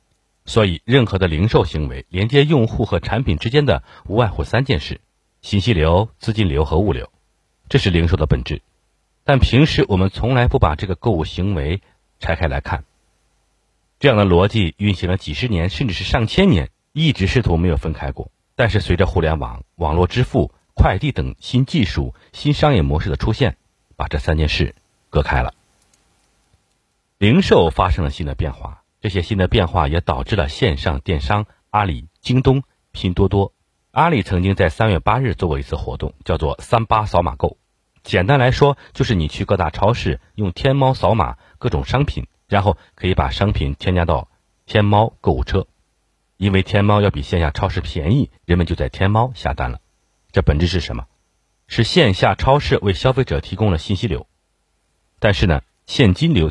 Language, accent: Chinese, native